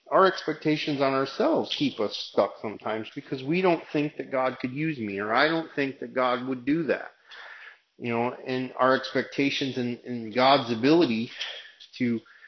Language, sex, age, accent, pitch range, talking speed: English, male, 30-49, American, 120-140 Hz, 175 wpm